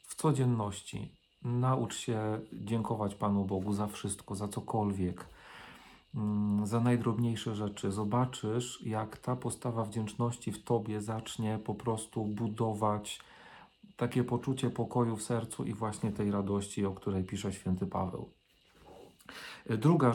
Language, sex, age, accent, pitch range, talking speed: Polish, male, 40-59, native, 105-120 Hz, 120 wpm